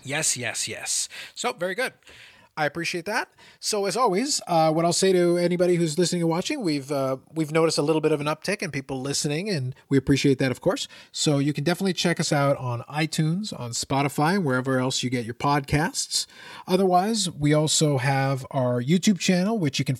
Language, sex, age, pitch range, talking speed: English, male, 30-49, 135-175 Hz, 200 wpm